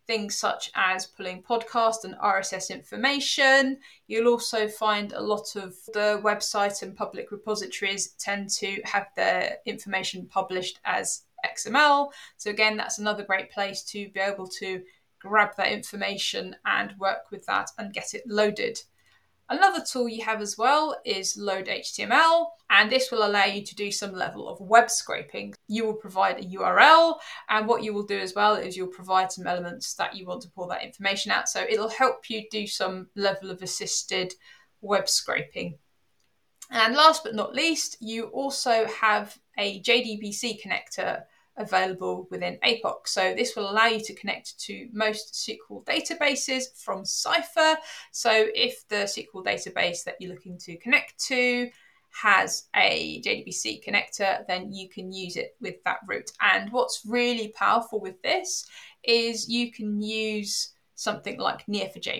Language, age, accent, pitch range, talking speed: English, 20-39, British, 195-245 Hz, 160 wpm